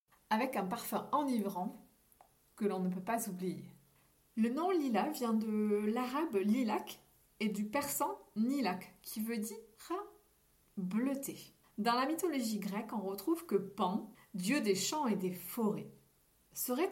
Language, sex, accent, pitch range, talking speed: French, female, French, 200-270 Hz, 140 wpm